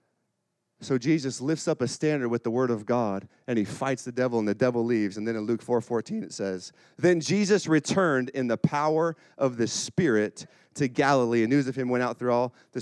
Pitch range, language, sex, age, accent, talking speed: 125-175 Hz, English, male, 40-59, American, 225 wpm